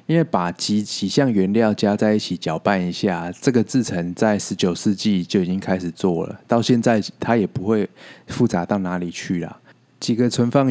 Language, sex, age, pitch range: Chinese, male, 20-39, 95-120 Hz